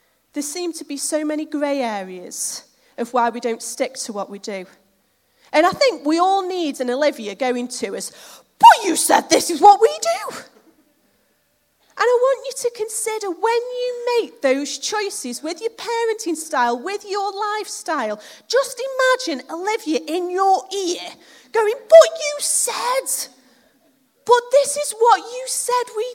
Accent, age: British, 30-49